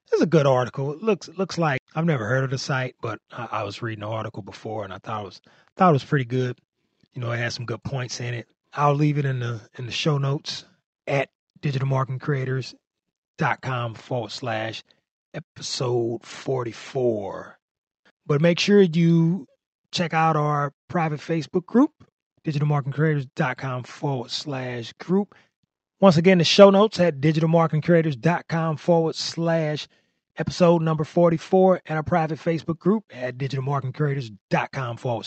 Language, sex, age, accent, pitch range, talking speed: English, male, 30-49, American, 125-175 Hz, 160 wpm